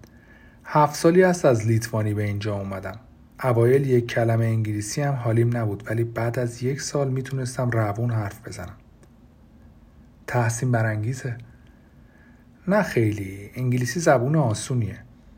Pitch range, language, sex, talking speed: 110-130 Hz, Persian, male, 120 wpm